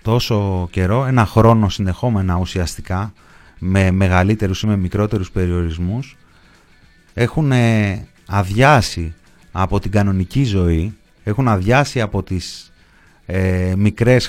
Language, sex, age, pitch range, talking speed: Greek, male, 30-49, 95-120 Hz, 100 wpm